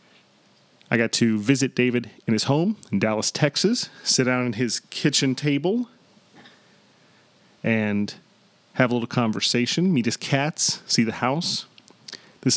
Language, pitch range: English, 115-150 Hz